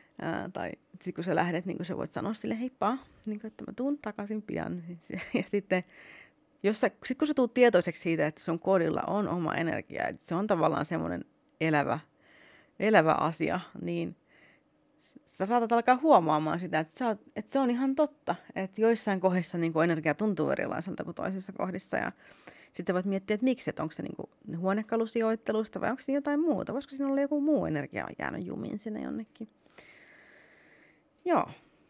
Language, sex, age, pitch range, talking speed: Finnish, female, 30-49, 160-225 Hz, 165 wpm